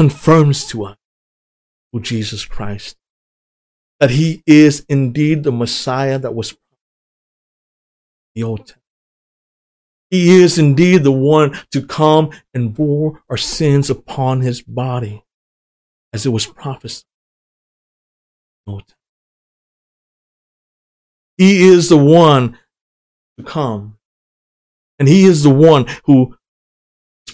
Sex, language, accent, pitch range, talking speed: male, English, American, 105-140 Hz, 110 wpm